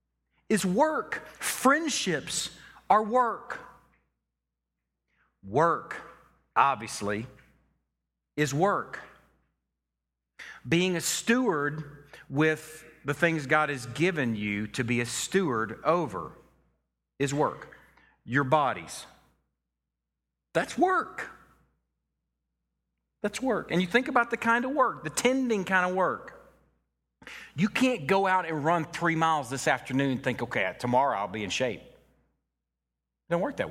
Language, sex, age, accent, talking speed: English, male, 40-59, American, 120 wpm